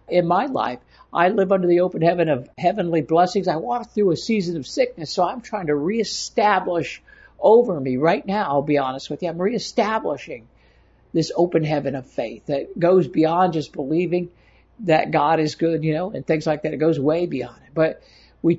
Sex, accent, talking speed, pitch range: male, American, 200 wpm, 150-185 Hz